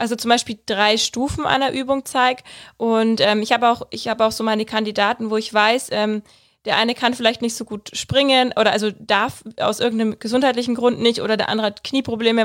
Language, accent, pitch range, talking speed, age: German, German, 215-245 Hz, 210 wpm, 20-39